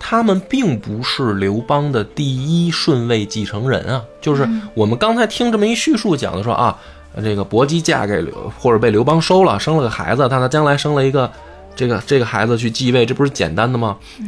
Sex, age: male, 20-39